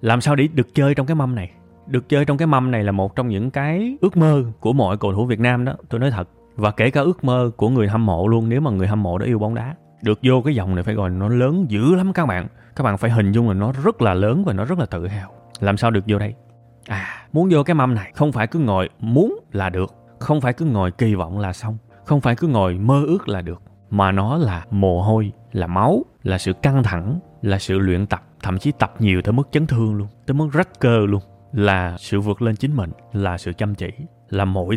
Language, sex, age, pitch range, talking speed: Vietnamese, male, 20-39, 100-135 Hz, 265 wpm